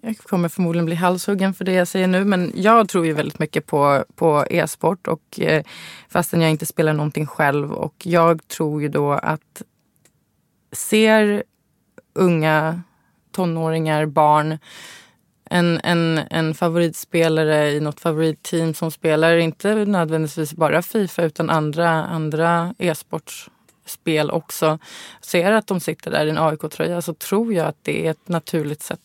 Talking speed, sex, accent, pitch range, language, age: 145 wpm, female, Swedish, 155-185 Hz, English, 20-39